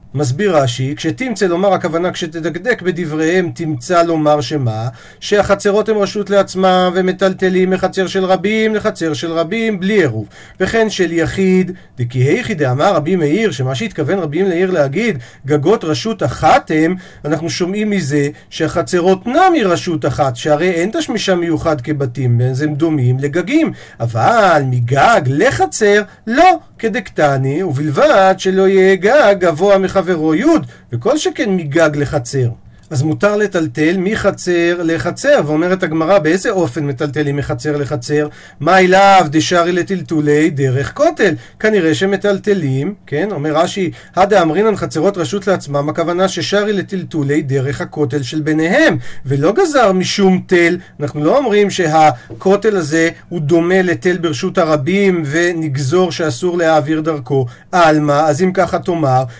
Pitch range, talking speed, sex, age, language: 150-190 Hz, 130 wpm, male, 40-59, Hebrew